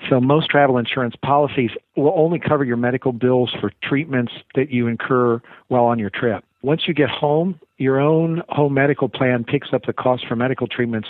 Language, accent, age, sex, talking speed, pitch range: English, American, 50-69, male, 195 wpm, 120-140 Hz